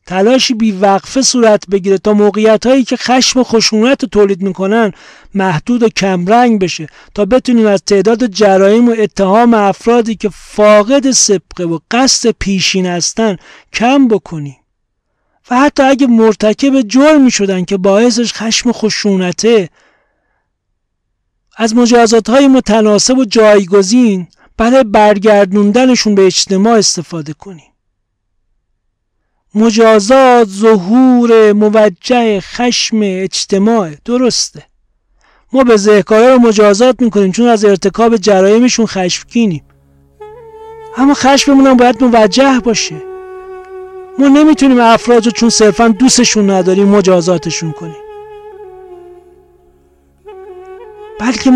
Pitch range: 195-255 Hz